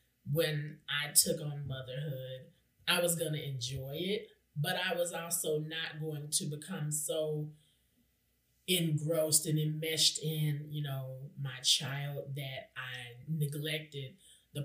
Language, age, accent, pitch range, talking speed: English, 30-49, American, 145-170 Hz, 130 wpm